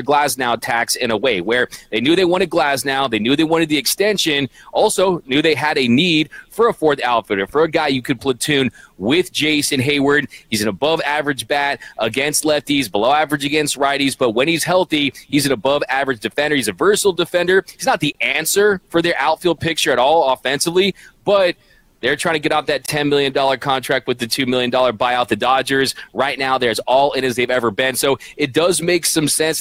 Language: English